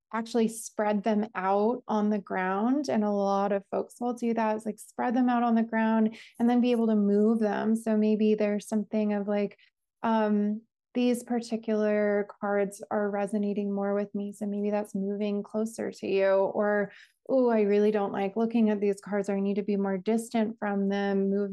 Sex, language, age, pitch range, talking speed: female, English, 20-39, 200-215 Hz, 200 wpm